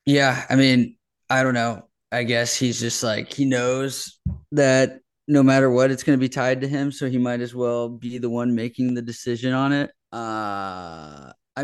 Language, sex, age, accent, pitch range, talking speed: English, male, 20-39, American, 110-135 Hz, 200 wpm